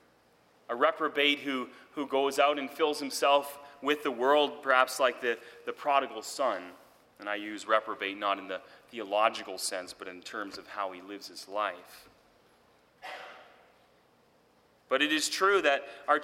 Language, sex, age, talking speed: English, male, 30-49, 155 wpm